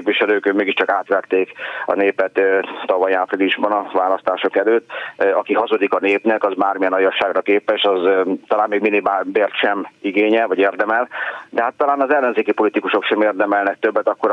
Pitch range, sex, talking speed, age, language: 100-135 Hz, male, 160 wpm, 30-49, Hungarian